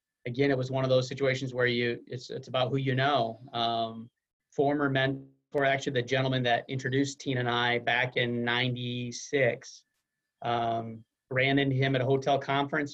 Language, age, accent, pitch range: English, 30-49, American, 120-140 Hz